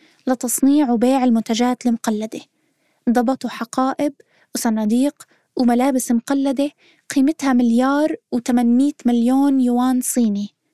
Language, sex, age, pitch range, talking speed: Arabic, female, 20-39, 240-280 Hz, 85 wpm